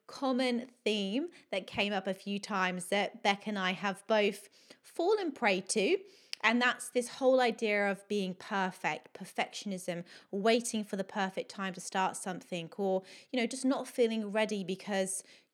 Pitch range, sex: 195-245 Hz, female